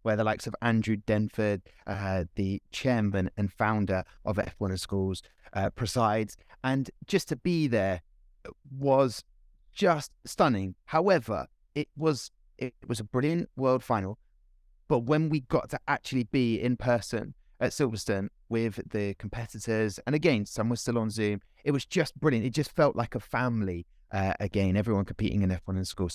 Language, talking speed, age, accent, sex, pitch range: English, 170 wpm, 30-49, British, male, 100-135 Hz